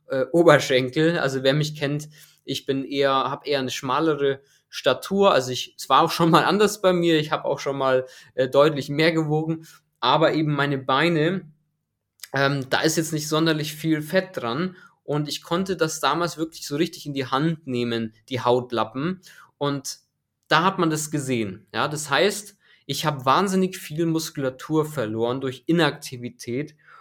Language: German